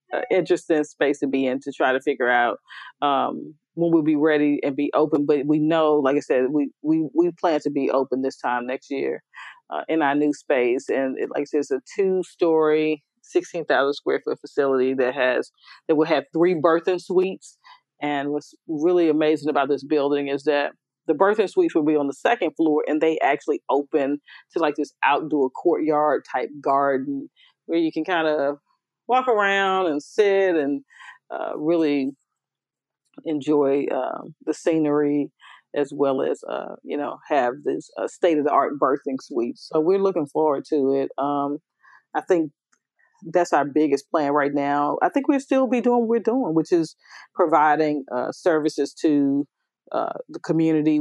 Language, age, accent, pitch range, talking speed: English, 40-59, American, 145-180 Hz, 180 wpm